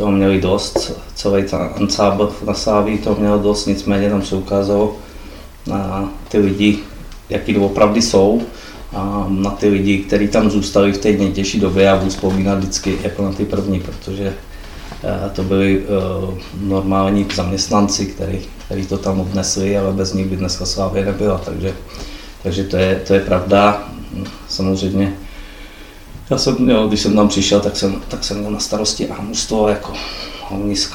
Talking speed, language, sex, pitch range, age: 155 wpm, Czech, male, 95-100 Hz, 20-39